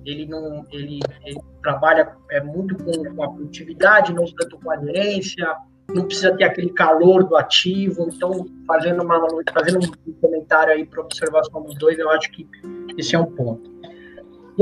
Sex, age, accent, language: male, 20-39, Brazilian, Portuguese